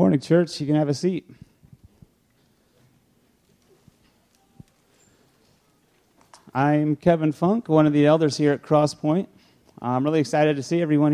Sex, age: male, 30-49